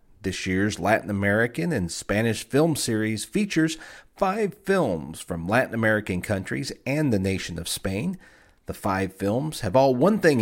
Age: 50-69